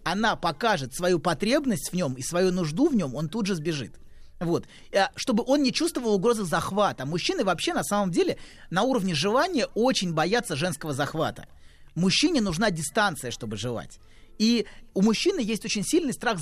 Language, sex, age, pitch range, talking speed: Russian, male, 30-49, 155-220 Hz, 165 wpm